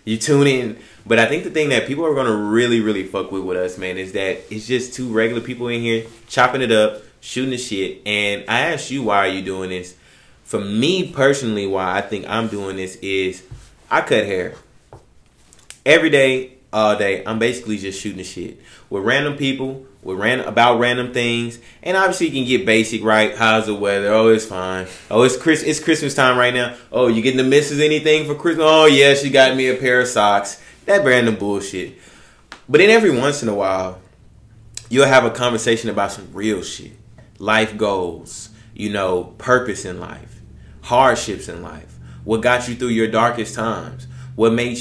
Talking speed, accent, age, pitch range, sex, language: 200 wpm, American, 20-39, 100-125 Hz, male, English